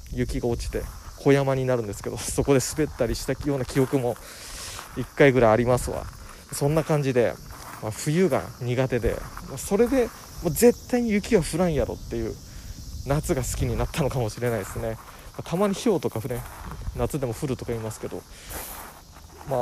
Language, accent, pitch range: Japanese, native, 100-140 Hz